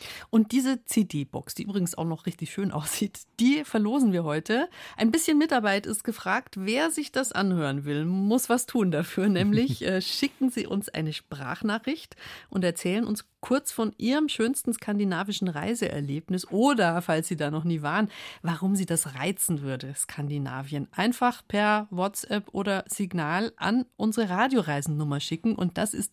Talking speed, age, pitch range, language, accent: 160 wpm, 50-69, 165-230 Hz, German, German